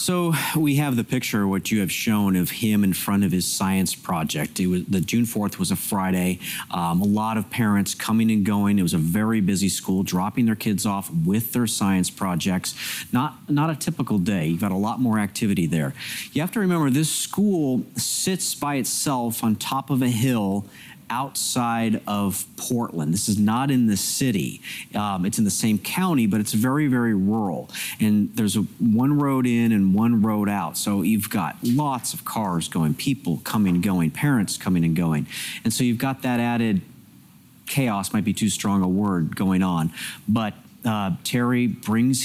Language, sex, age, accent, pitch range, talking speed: English, male, 40-59, American, 95-125 Hz, 190 wpm